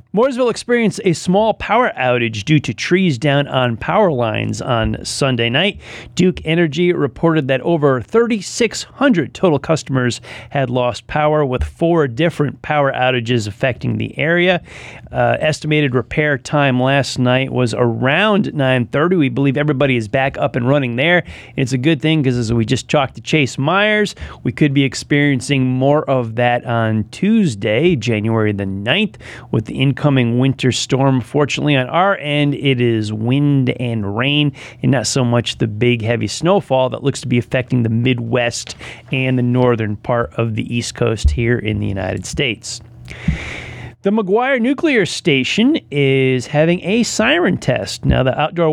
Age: 30-49